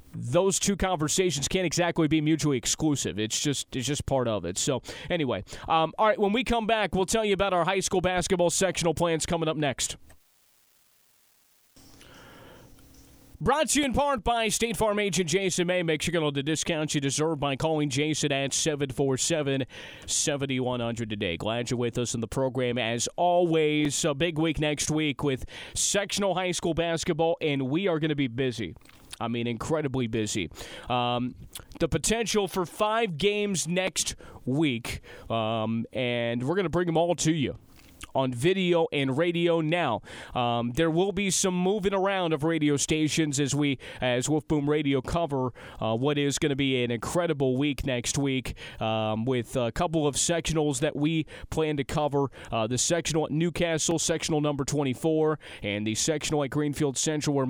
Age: 30-49